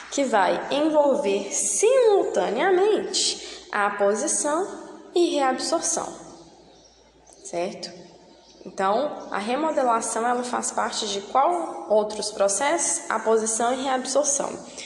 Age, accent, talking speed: 10-29, Brazilian, 95 wpm